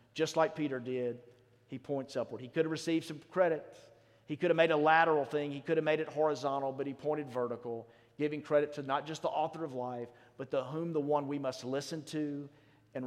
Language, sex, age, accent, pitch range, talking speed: English, male, 40-59, American, 125-160 Hz, 225 wpm